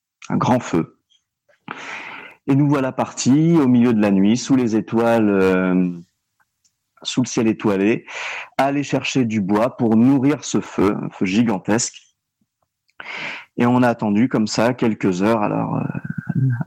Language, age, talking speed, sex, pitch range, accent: French, 40-59, 150 wpm, male, 100-130 Hz, French